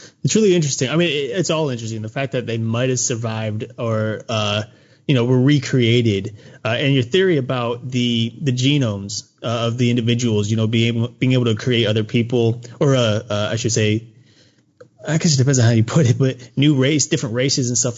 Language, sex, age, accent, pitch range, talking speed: English, male, 30-49, American, 115-135 Hz, 215 wpm